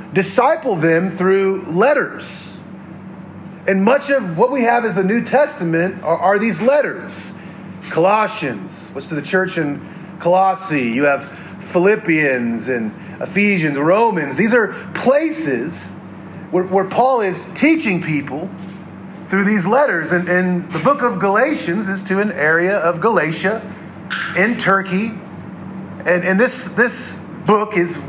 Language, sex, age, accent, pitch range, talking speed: English, male, 40-59, American, 165-205 Hz, 135 wpm